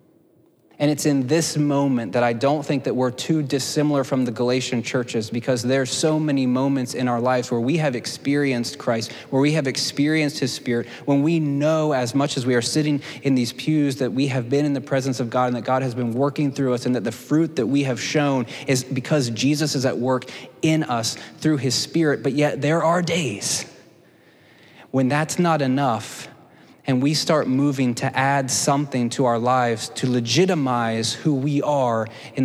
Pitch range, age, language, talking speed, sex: 120-140 Hz, 20-39, English, 200 wpm, male